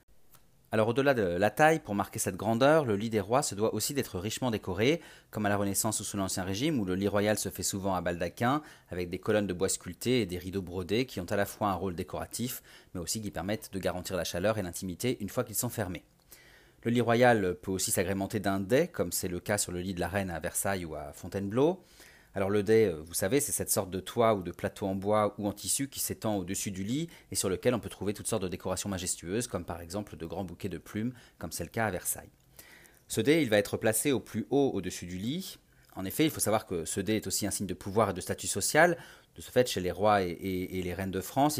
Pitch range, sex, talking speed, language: 95-110 Hz, male, 265 wpm, French